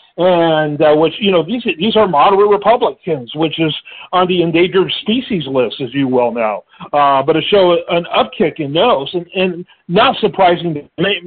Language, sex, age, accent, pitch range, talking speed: English, male, 50-69, American, 160-205 Hz, 175 wpm